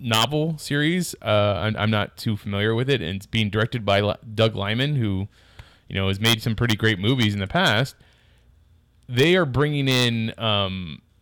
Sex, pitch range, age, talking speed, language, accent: male, 105-130 Hz, 30-49, 185 wpm, English, American